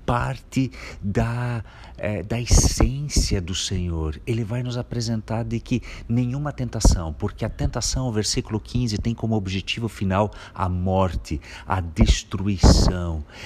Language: Portuguese